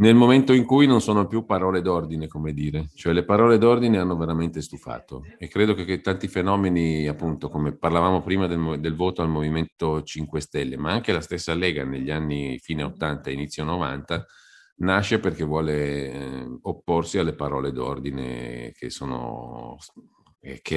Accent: native